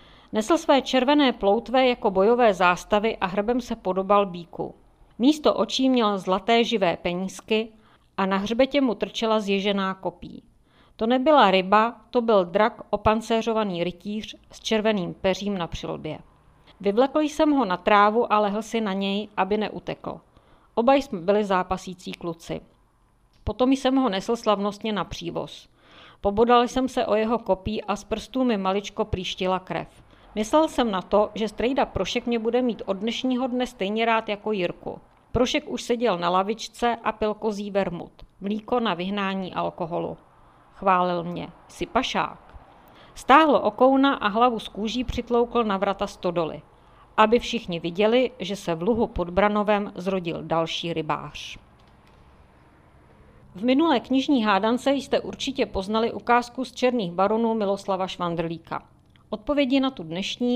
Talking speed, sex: 145 wpm, female